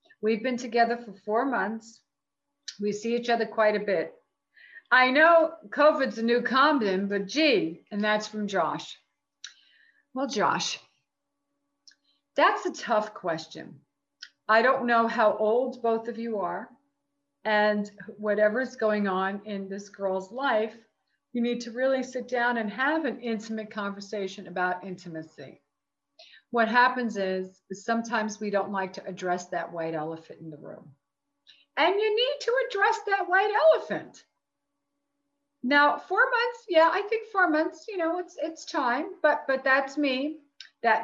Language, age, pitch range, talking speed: English, 50-69, 210-290 Hz, 150 wpm